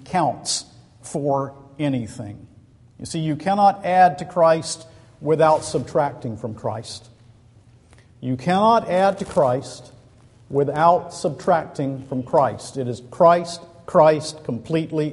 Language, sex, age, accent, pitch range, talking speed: English, male, 50-69, American, 120-160 Hz, 110 wpm